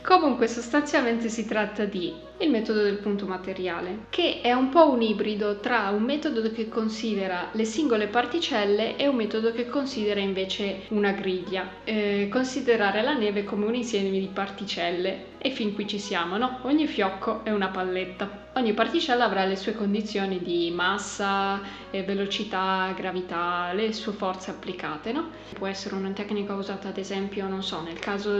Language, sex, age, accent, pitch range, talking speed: Italian, female, 20-39, native, 195-225 Hz, 165 wpm